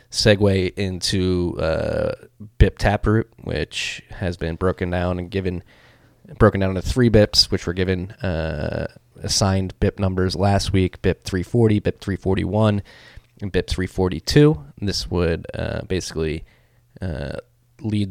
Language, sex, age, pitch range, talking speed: English, male, 20-39, 90-110 Hz, 135 wpm